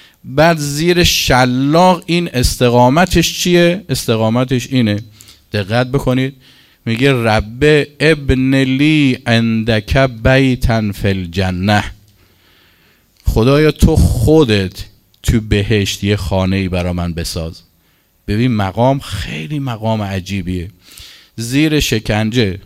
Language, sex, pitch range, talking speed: Persian, male, 100-135 Hz, 90 wpm